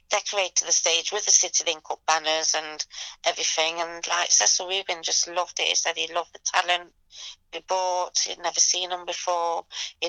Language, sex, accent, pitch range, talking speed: English, female, British, 155-180 Hz, 185 wpm